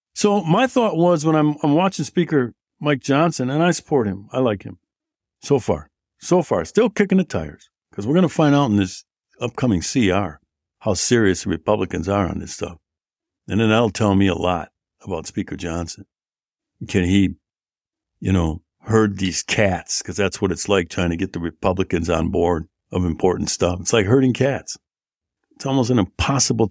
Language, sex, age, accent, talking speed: English, male, 60-79, American, 185 wpm